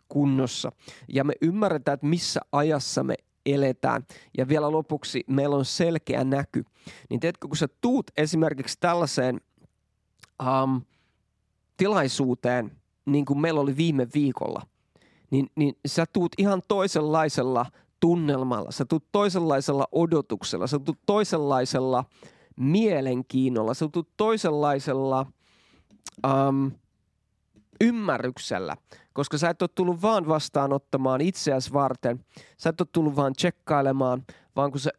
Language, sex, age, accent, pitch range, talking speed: English, male, 30-49, Finnish, 130-160 Hz, 115 wpm